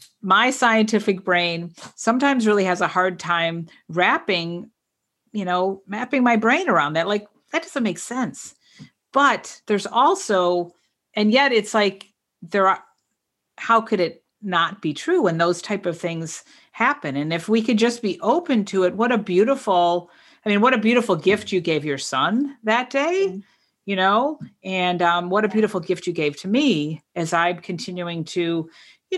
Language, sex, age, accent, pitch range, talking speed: English, female, 50-69, American, 175-225 Hz, 175 wpm